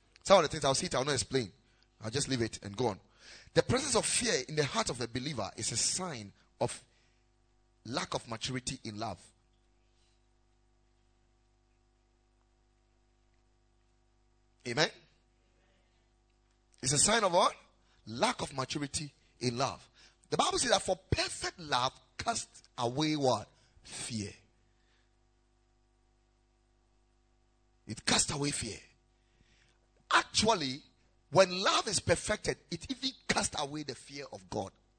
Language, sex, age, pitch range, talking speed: English, male, 30-49, 120-135 Hz, 125 wpm